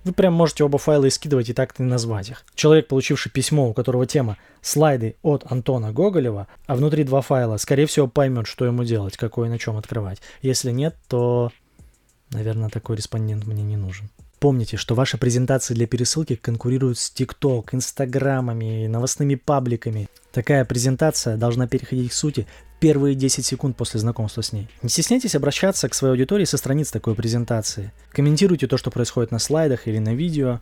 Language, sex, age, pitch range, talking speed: Russian, male, 20-39, 115-140 Hz, 175 wpm